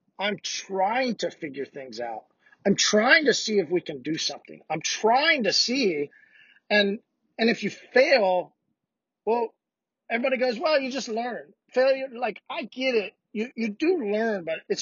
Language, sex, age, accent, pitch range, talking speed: English, male, 40-59, American, 185-240 Hz, 170 wpm